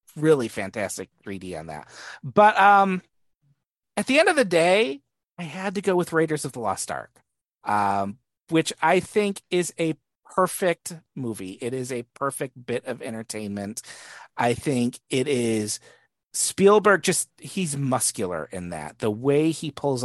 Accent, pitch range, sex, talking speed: American, 120-180 Hz, male, 155 wpm